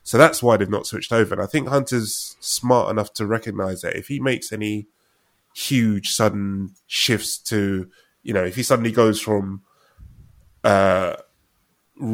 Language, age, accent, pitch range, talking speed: English, 20-39, British, 100-120 Hz, 160 wpm